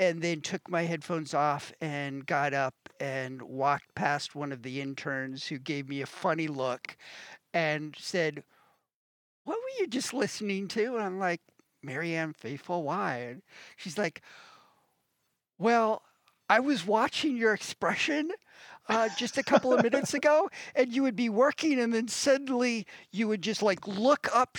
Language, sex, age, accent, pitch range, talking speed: English, male, 50-69, American, 160-230 Hz, 160 wpm